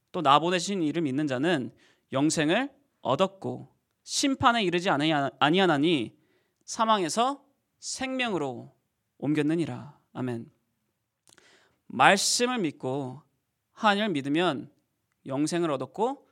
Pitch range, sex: 150-230 Hz, male